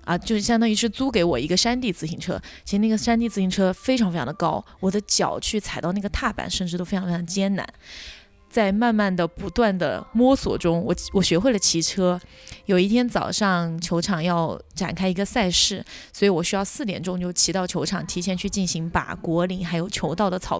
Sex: female